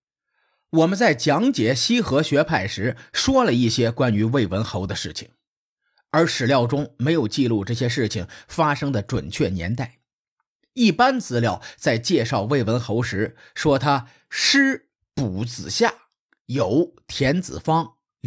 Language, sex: Chinese, male